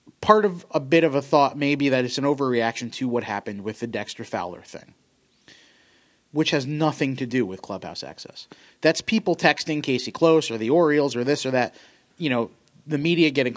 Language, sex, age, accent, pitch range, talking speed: English, male, 30-49, American, 120-155 Hz, 200 wpm